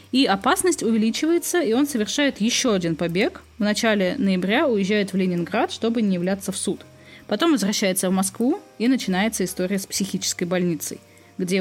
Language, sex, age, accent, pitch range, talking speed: Russian, female, 20-39, native, 185-255 Hz, 160 wpm